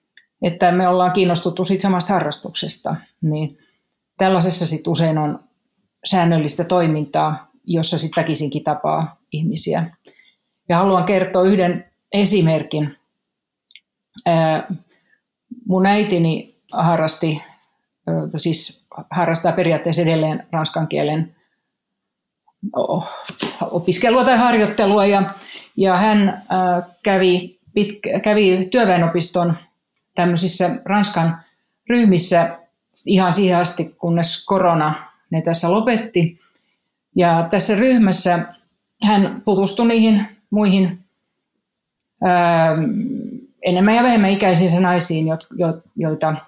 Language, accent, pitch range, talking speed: Finnish, native, 165-195 Hz, 85 wpm